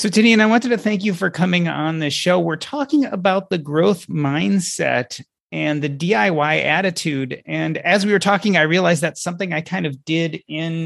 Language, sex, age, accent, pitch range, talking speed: English, male, 30-49, American, 145-195 Hz, 200 wpm